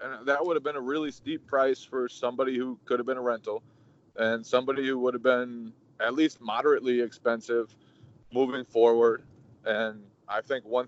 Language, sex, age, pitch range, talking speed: English, male, 20-39, 110-145 Hz, 180 wpm